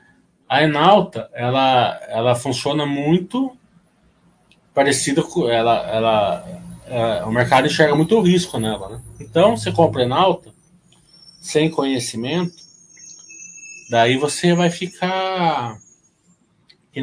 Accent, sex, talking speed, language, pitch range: Brazilian, male, 105 wpm, Portuguese, 125-175 Hz